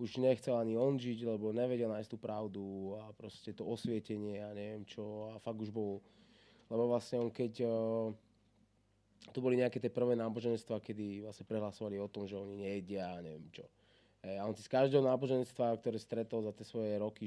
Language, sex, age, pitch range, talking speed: Slovak, male, 20-39, 100-115 Hz, 200 wpm